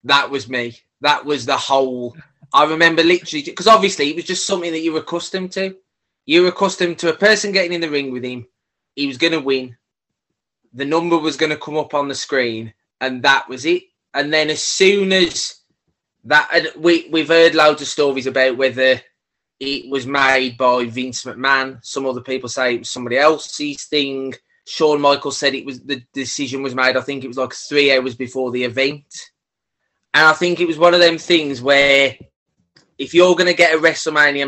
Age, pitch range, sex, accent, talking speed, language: 20-39, 130-165 Hz, male, British, 205 wpm, English